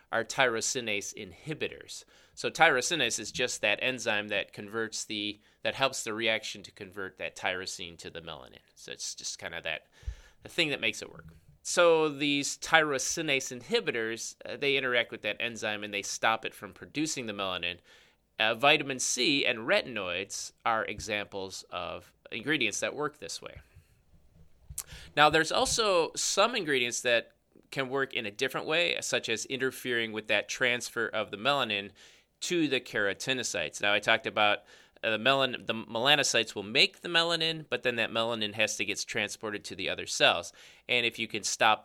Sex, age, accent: male, 30-49, American